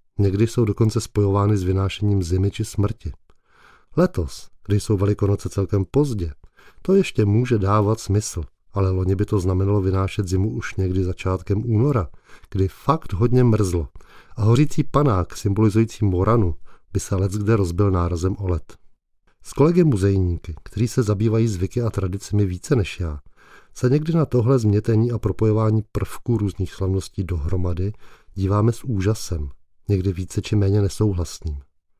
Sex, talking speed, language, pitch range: male, 150 wpm, Czech, 95-115 Hz